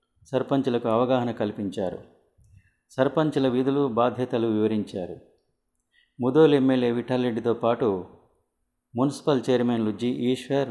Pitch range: 110-135 Hz